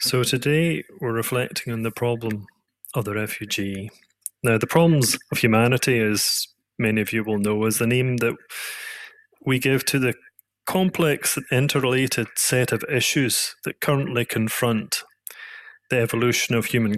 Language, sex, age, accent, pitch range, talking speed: English, male, 30-49, British, 115-150 Hz, 145 wpm